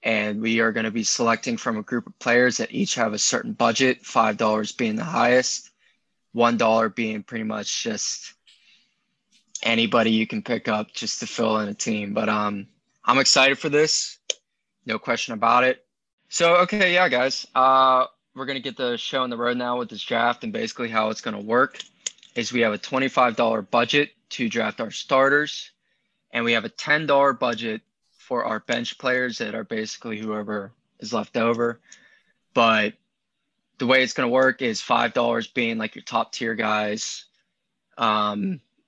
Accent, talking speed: American, 180 wpm